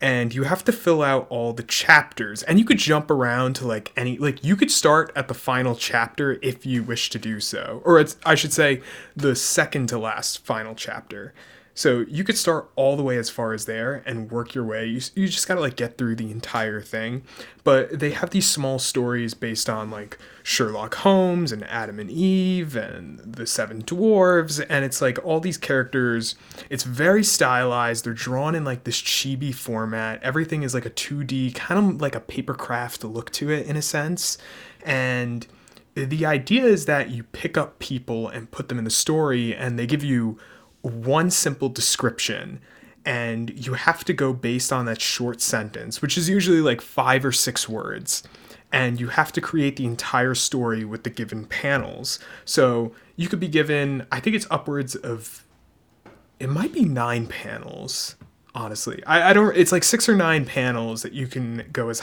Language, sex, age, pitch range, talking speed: English, male, 20-39, 120-155 Hz, 195 wpm